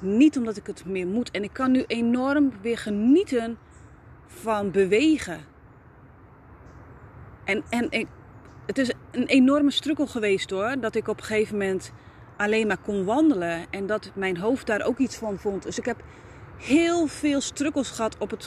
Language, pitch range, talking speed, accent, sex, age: Dutch, 185-250 Hz, 170 wpm, Dutch, female, 30-49